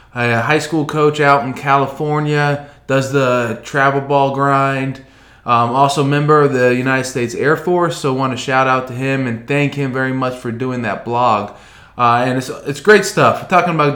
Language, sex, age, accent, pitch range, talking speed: English, male, 20-39, American, 125-150 Hz, 200 wpm